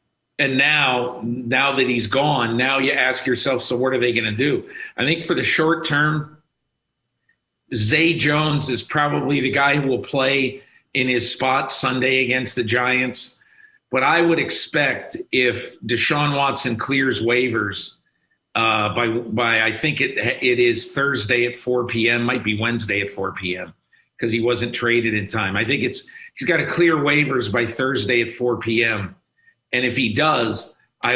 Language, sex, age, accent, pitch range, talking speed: English, male, 50-69, American, 115-140 Hz, 175 wpm